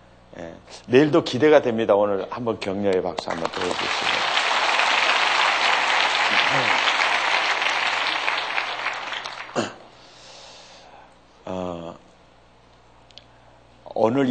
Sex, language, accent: male, Korean, native